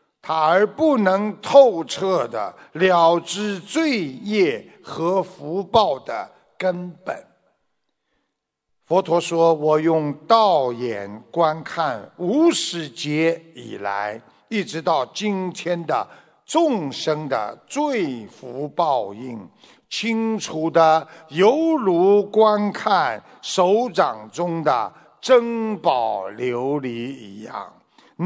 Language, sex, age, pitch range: Chinese, male, 60-79, 120-185 Hz